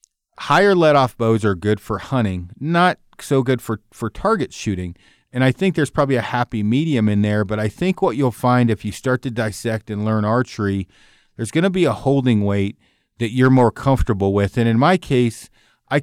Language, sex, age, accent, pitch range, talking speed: English, male, 40-59, American, 105-135 Hz, 205 wpm